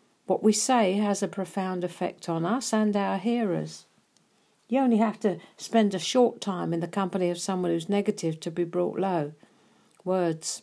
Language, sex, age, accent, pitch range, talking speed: English, female, 50-69, British, 170-215 Hz, 180 wpm